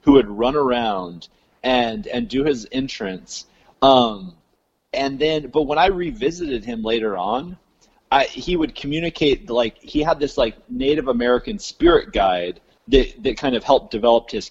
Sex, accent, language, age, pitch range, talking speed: male, American, English, 30-49, 120-165 Hz, 160 wpm